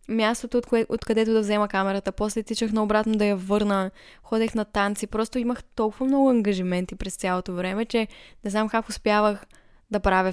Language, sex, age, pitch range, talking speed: Bulgarian, female, 10-29, 195-235 Hz, 180 wpm